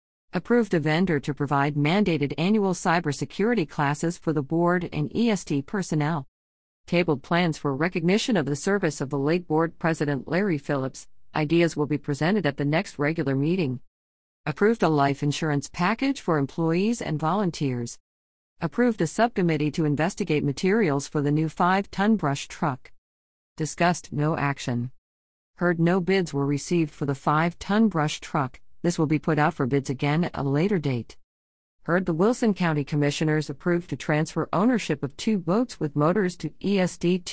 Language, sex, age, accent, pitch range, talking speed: English, female, 50-69, American, 145-180 Hz, 160 wpm